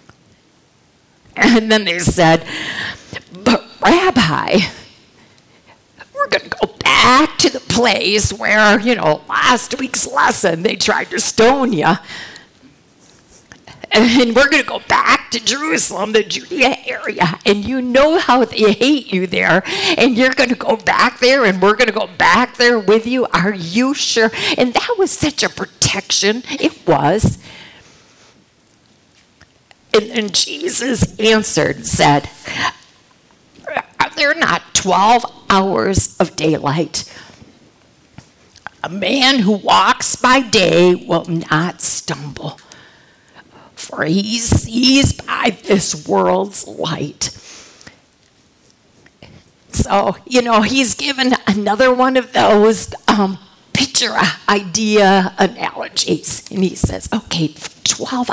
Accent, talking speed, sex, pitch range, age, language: American, 120 wpm, female, 195-255 Hz, 50-69, English